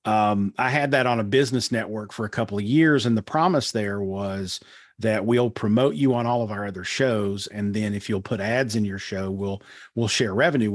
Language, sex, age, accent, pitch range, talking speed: English, male, 40-59, American, 105-130 Hz, 230 wpm